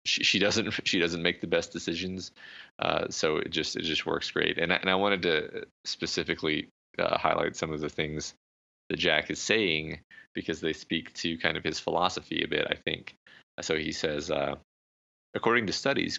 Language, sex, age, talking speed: English, male, 30-49, 195 wpm